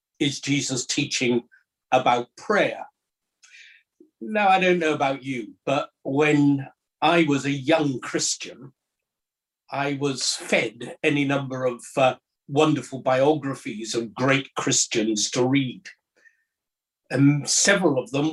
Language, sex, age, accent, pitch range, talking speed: English, male, 60-79, British, 130-160 Hz, 120 wpm